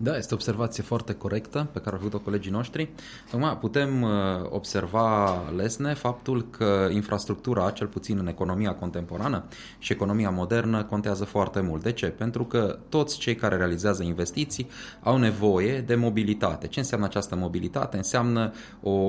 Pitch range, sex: 95-120 Hz, male